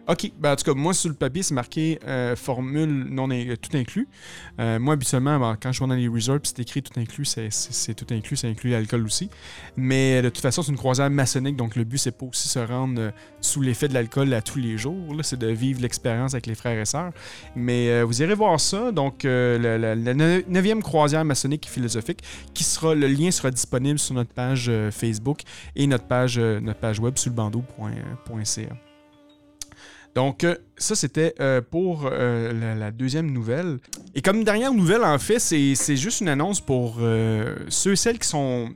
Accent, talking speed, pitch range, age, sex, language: Canadian, 210 wpm, 120-155 Hz, 30-49, male, French